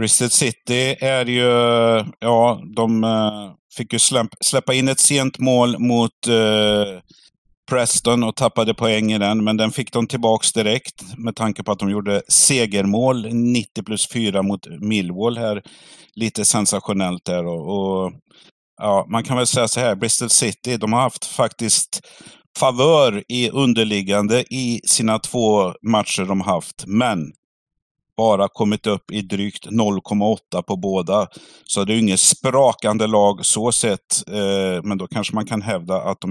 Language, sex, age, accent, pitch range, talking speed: Swedish, male, 50-69, native, 105-125 Hz, 155 wpm